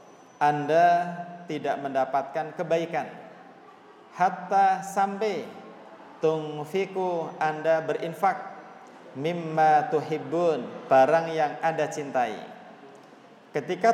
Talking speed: 75 wpm